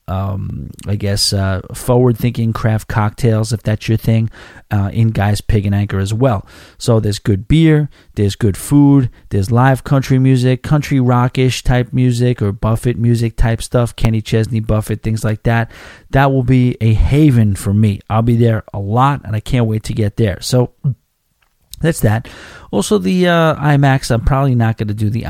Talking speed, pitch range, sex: 185 wpm, 105-130 Hz, male